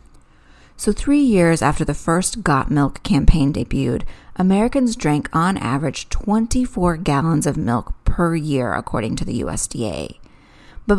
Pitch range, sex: 145-200 Hz, female